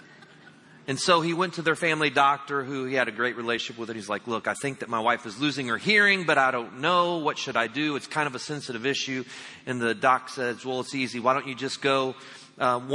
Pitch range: 130-160 Hz